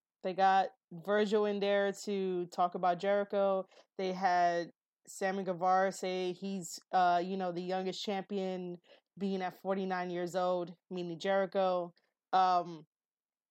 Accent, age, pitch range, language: American, 20-39, 180-210 Hz, English